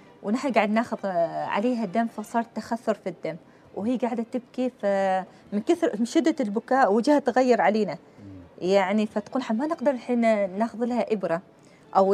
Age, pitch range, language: 20-39, 205-270 Hz, Arabic